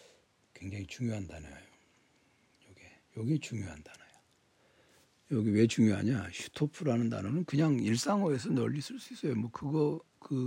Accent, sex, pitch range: native, male, 105-135 Hz